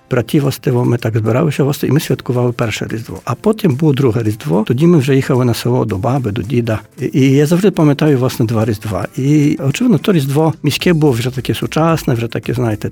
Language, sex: Ukrainian, male